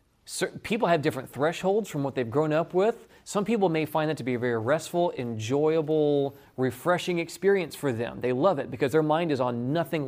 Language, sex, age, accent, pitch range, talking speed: English, male, 30-49, American, 125-155 Hz, 200 wpm